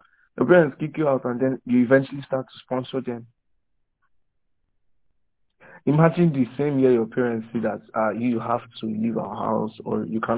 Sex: male